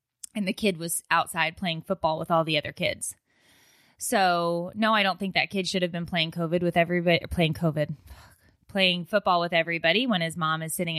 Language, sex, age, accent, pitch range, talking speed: English, female, 20-39, American, 160-200 Hz, 200 wpm